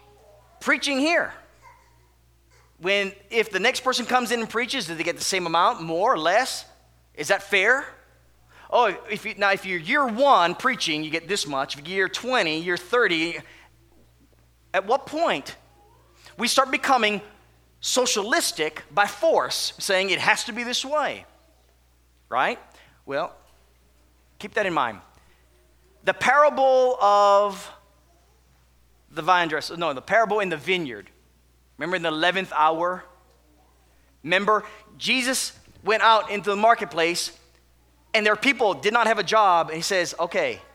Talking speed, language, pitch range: 145 wpm, English, 155-240 Hz